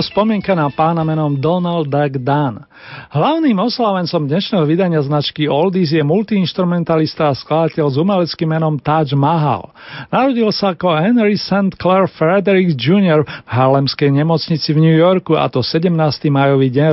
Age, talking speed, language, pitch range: 40-59, 140 wpm, Slovak, 145-185 Hz